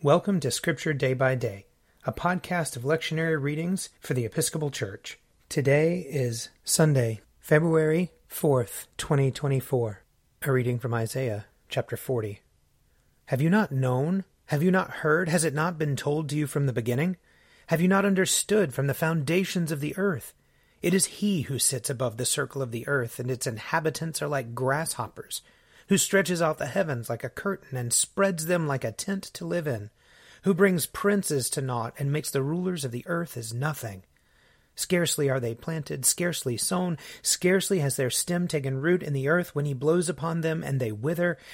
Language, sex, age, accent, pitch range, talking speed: English, male, 30-49, American, 130-170 Hz, 180 wpm